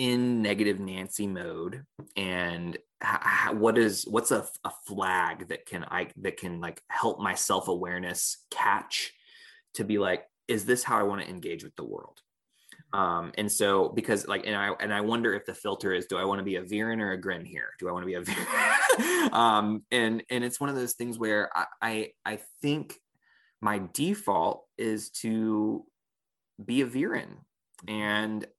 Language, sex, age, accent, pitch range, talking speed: English, male, 20-39, American, 90-110 Hz, 185 wpm